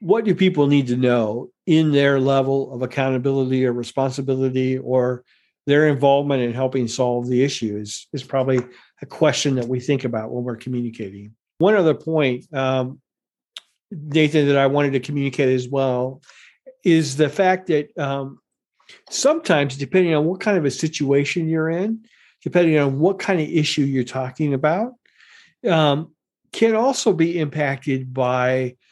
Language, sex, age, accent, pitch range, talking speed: English, male, 50-69, American, 130-160 Hz, 155 wpm